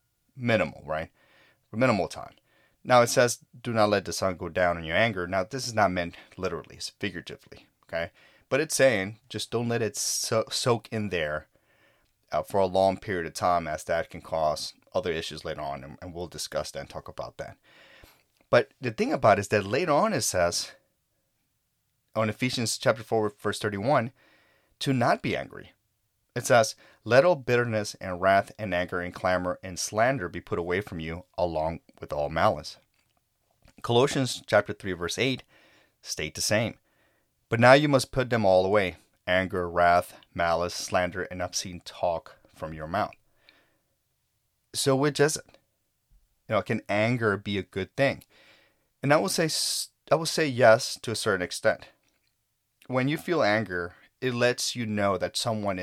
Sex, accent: male, American